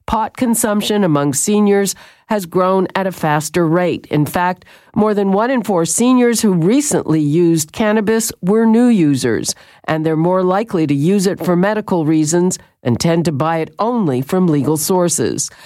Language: English